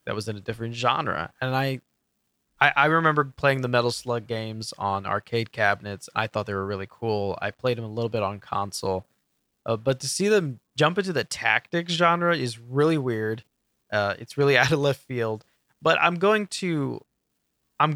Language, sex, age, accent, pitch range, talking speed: English, male, 20-39, American, 110-145 Hz, 195 wpm